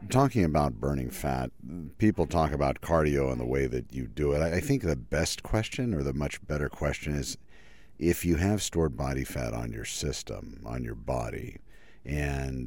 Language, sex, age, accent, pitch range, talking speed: English, male, 50-69, American, 65-80 Hz, 185 wpm